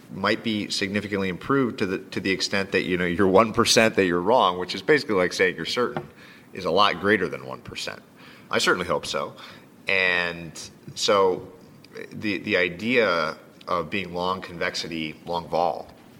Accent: American